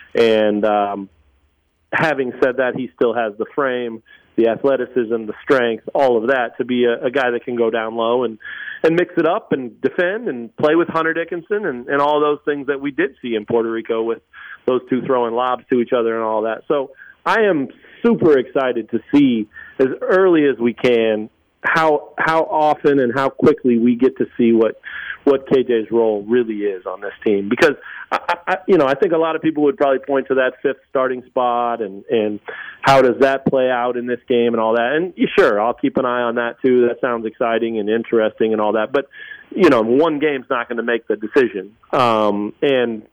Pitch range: 115-140 Hz